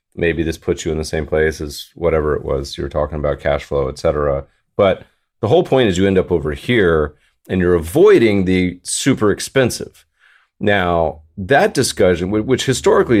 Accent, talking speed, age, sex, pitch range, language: American, 185 wpm, 30-49, male, 80-95 Hz, English